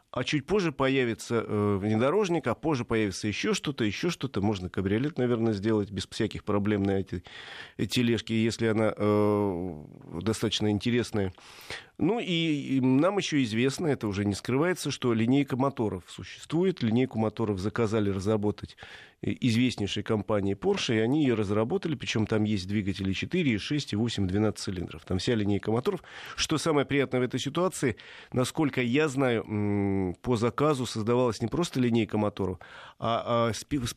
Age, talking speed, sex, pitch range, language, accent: 30-49, 145 wpm, male, 105-135 Hz, Russian, native